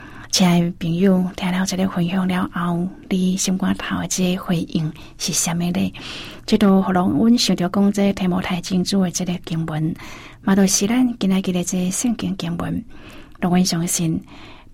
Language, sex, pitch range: Chinese, female, 175-195 Hz